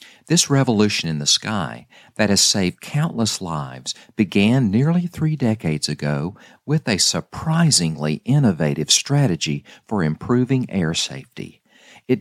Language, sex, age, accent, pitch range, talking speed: English, male, 50-69, American, 80-125 Hz, 125 wpm